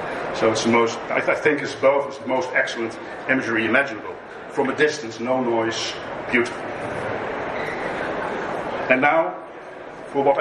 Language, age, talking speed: English, 50-69, 145 wpm